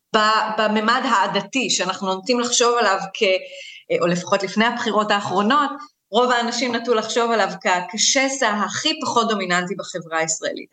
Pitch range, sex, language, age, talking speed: 200-285 Hz, female, Hebrew, 30-49, 130 wpm